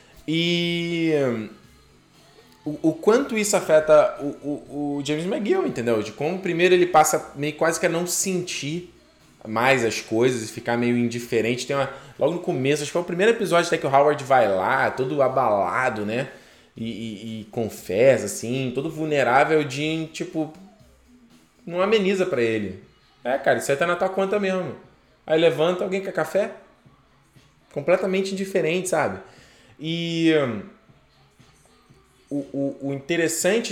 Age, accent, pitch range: 20-39, Brazilian, 135-180 Hz